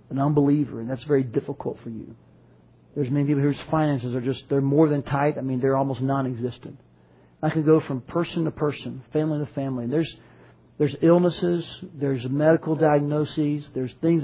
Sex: male